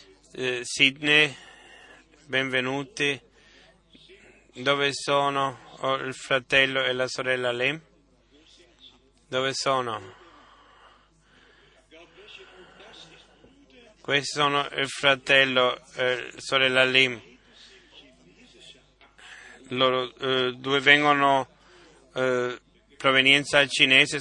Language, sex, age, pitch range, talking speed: Italian, male, 30-49, 130-140 Hz, 65 wpm